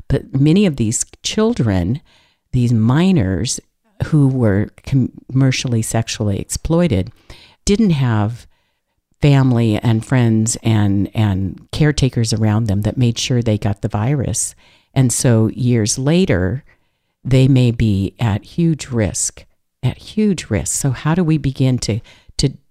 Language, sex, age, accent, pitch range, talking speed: English, female, 50-69, American, 105-140 Hz, 130 wpm